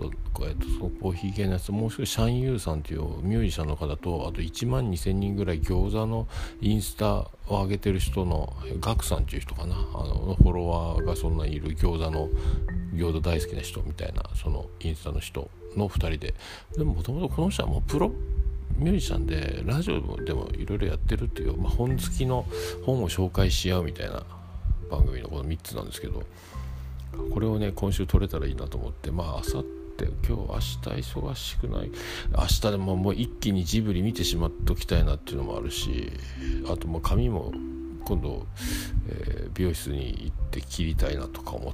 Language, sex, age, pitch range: Japanese, male, 50-69, 75-95 Hz